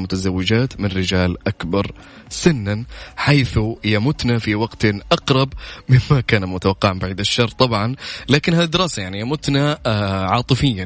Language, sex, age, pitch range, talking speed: Arabic, male, 20-39, 95-120 Hz, 120 wpm